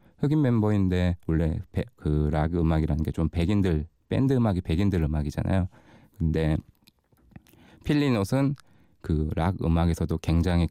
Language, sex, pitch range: Korean, male, 80-110 Hz